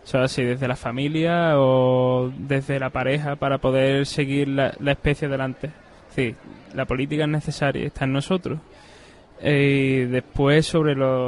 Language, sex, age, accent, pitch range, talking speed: Spanish, male, 20-39, Spanish, 130-150 Hz, 160 wpm